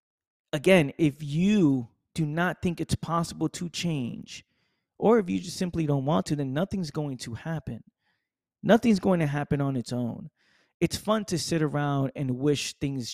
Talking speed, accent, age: 175 wpm, American, 20-39